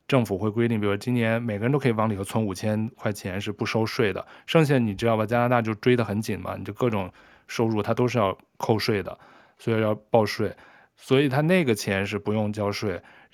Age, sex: 20-39, male